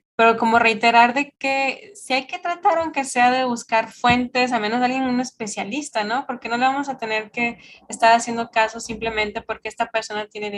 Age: 20-39